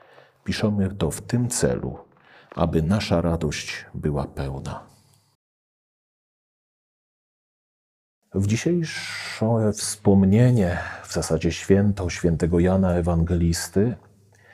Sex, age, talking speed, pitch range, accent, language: male, 40-59, 80 wpm, 85-105 Hz, native, Polish